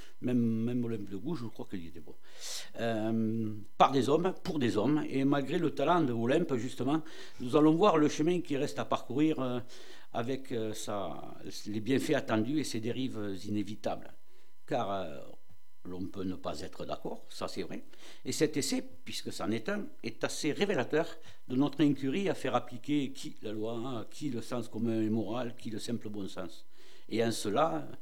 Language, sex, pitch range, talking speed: French, male, 110-150 Hz, 190 wpm